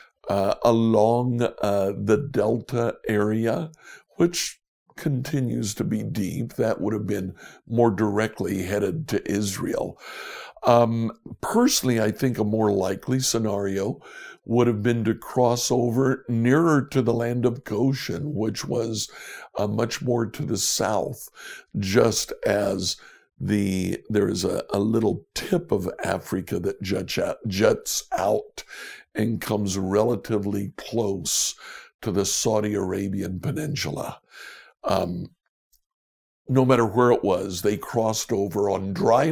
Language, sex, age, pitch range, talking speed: English, male, 60-79, 100-125 Hz, 130 wpm